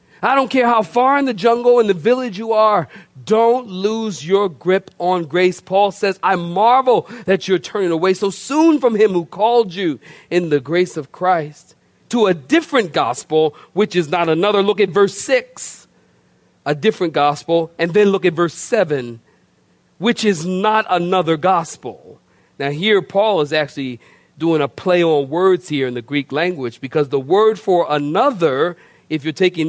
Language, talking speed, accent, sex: English, 180 wpm, American, male